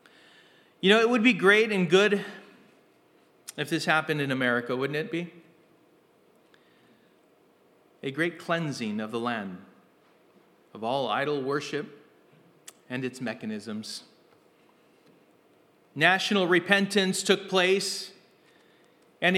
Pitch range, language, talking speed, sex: 155-205 Hz, English, 105 wpm, male